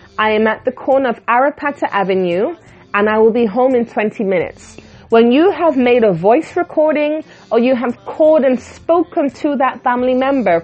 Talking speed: 185 wpm